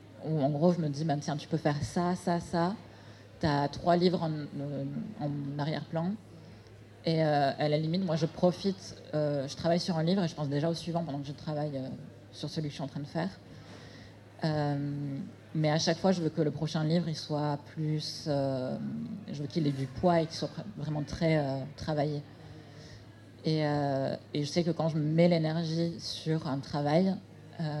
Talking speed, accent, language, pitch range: 205 wpm, French, French, 135-160 Hz